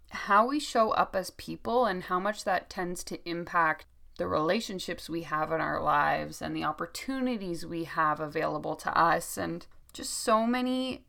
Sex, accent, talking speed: female, American, 175 wpm